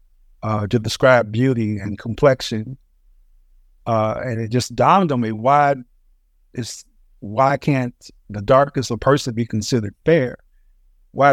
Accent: American